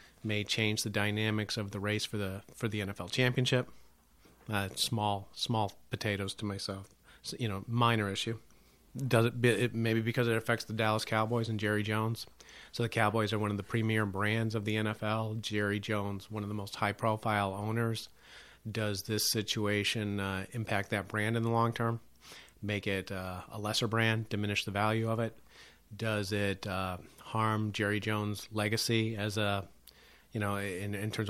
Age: 40-59